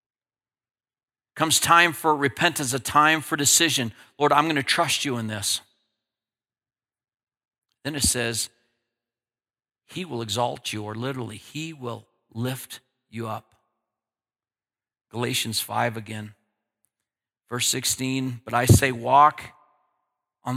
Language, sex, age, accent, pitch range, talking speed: English, male, 40-59, American, 115-150 Hz, 115 wpm